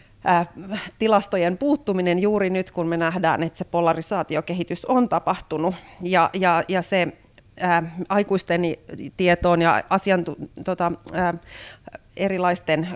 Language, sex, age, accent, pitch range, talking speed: Finnish, female, 30-49, native, 165-190 Hz, 90 wpm